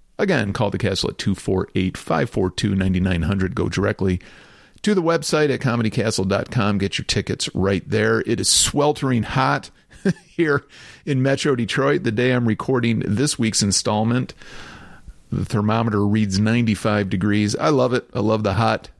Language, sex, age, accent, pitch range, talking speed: English, male, 40-59, American, 105-135 Hz, 140 wpm